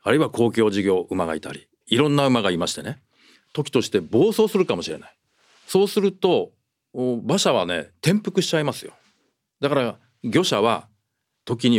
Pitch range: 120-175 Hz